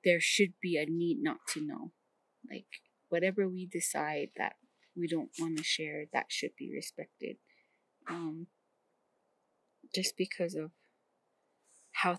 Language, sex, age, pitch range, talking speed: English, female, 20-39, 160-205 Hz, 135 wpm